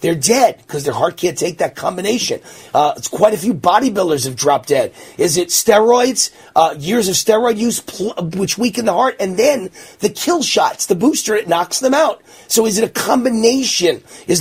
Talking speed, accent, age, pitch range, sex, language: 200 wpm, American, 30-49, 155-235 Hz, male, English